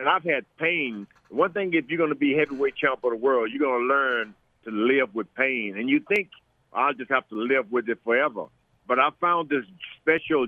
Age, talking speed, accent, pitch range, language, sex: 50-69, 230 wpm, American, 130-165 Hz, English, male